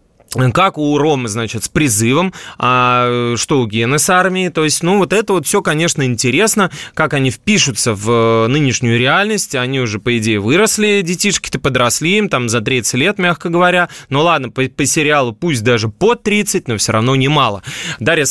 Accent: native